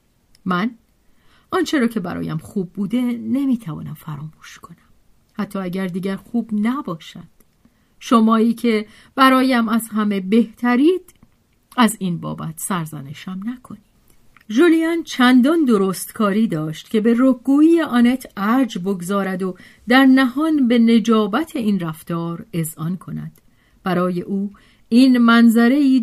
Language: Persian